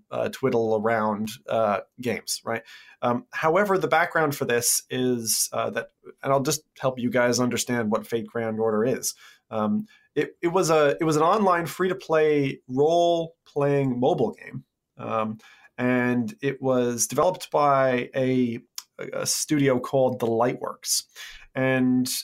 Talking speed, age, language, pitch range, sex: 150 wpm, 30-49, English, 125-170 Hz, male